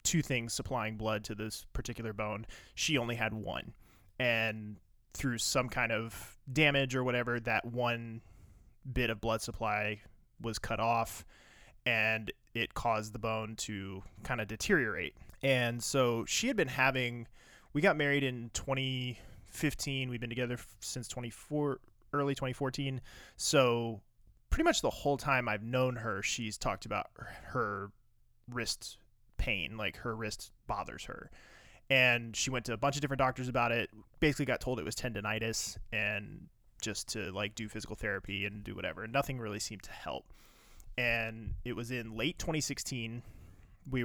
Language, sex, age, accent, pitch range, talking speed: English, male, 20-39, American, 105-125 Hz, 155 wpm